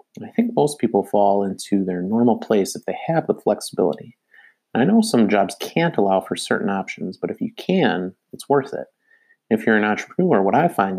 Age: 30-49